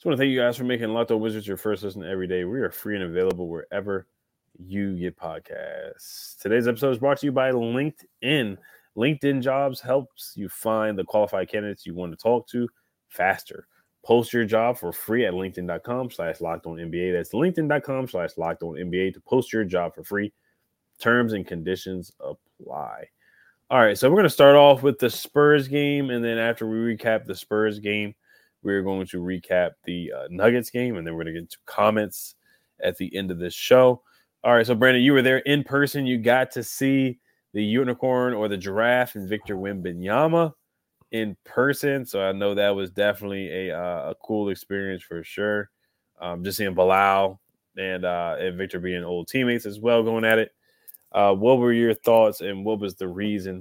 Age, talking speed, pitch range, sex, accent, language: 20-39, 195 wpm, 95-125 Hz, male, American, English